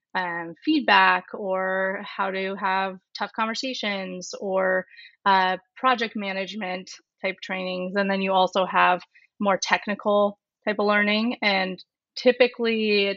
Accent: American